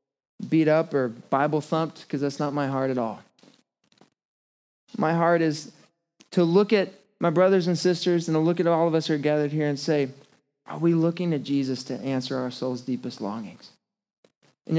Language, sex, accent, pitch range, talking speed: English, male, American, 170-220 Hz, 185 wpm